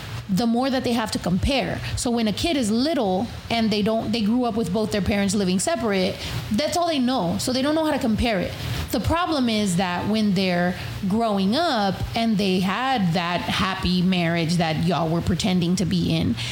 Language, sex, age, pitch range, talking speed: English, female, 30-49, 195-255 Hz, 210 wpm